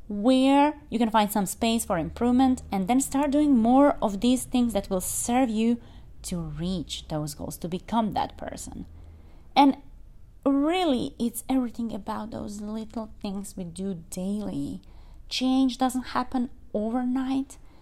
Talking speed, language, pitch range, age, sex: 145 wpm, English, 210-265 Hz, 20-39, female